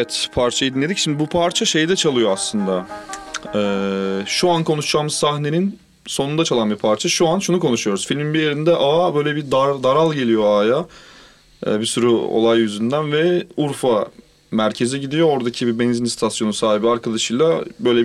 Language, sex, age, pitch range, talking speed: Turkish, male, 30-49, 115-170 Hz, 160 wpm